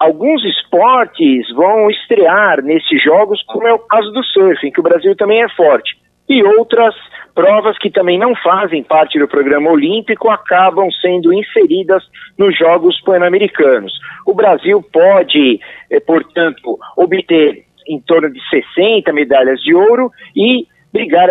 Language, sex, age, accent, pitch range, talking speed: Portuguese, male, 50-69, Brazilian, 165-260 Hz, 140 wpm